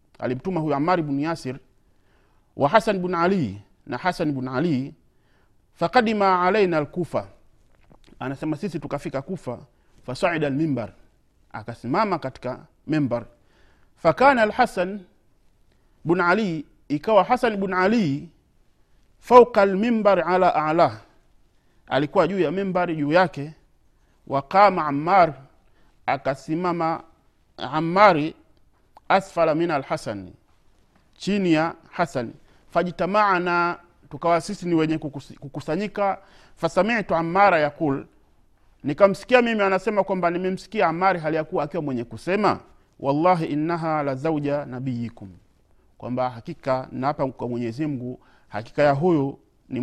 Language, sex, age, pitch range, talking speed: Swahili, male, 50-69, 130-180 Hz, 110 wpm